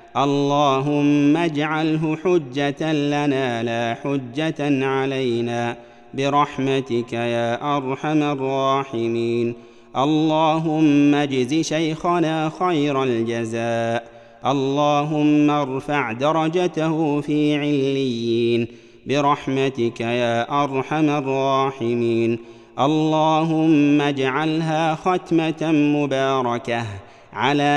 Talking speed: 65 wpm